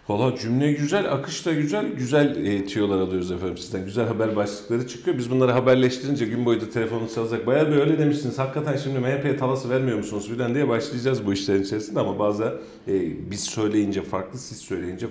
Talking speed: 185 wpm